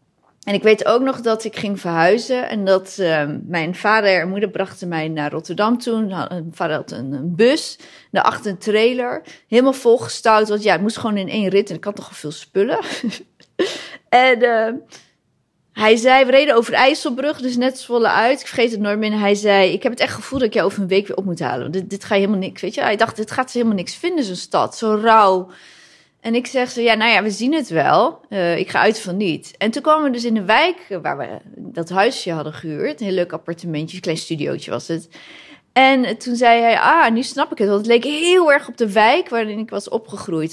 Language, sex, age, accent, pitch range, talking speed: Dutch, female, 30-49, Dutch, 190-240 Hz, 240 wpm